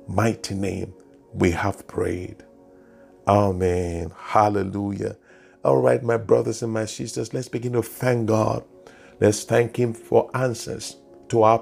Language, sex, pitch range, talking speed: English, male, 105-130 Hz, 135 wpm